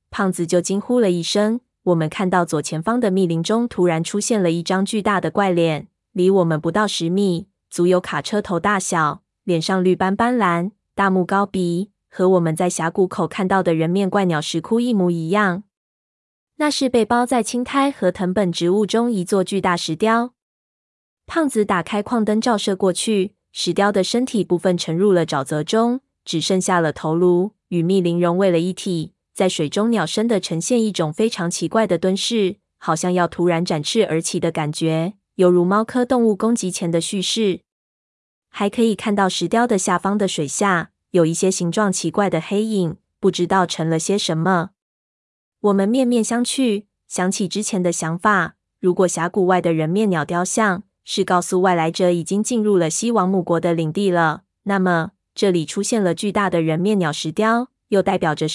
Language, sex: Chinese, female